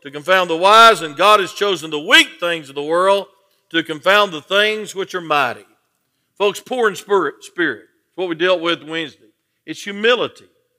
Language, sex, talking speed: English, male, 185 wpm